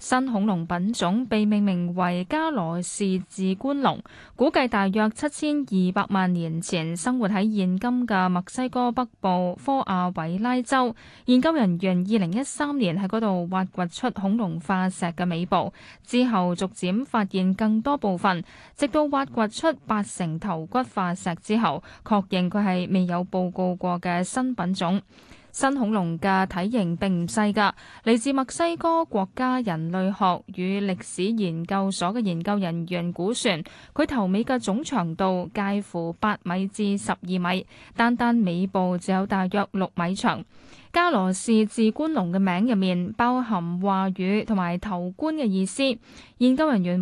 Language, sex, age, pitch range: Chinese, female, 10-29, 185-240 Hz